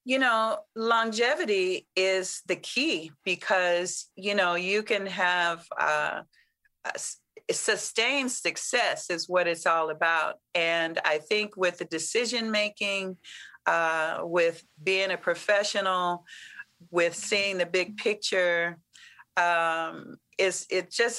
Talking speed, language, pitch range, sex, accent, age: 120 wpm, English, 170-205 Hz, female, American, 40-59